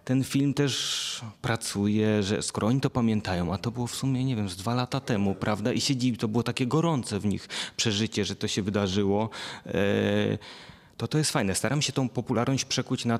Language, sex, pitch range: Polish, male, 100-130 Hz